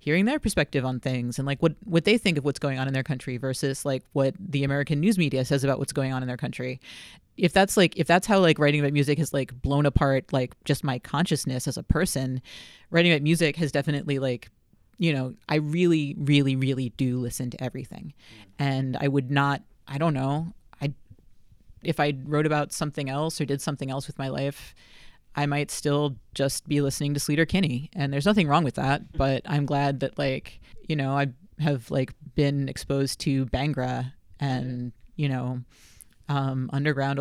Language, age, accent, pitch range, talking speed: English, 30-49, American, 135-155 Hz, 200 wpm